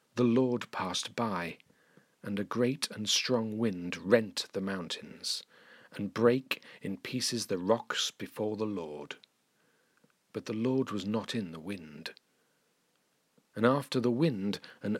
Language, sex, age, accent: English, male, 40-59, British